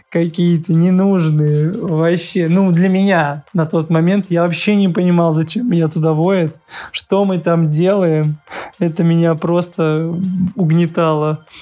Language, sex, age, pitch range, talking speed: Russian, male, 20-39, 155-180 Hz, 130 wpm